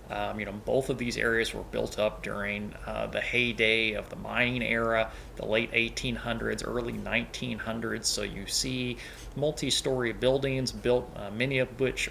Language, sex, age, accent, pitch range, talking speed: English, male, 30-49, American, 110-125 Hz, 165 wpm